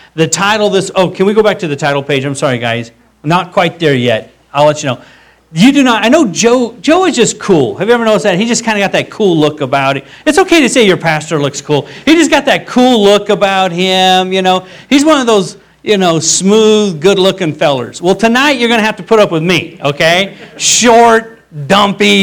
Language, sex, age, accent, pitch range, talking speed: English, male, 40-59, American, 160-220 Hz, 245 wpm